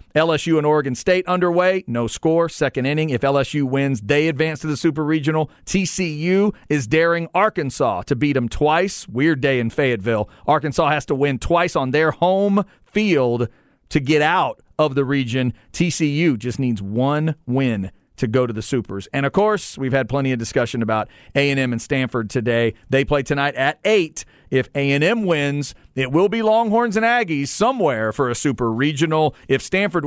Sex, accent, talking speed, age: male, American, 180 wpm, 40-59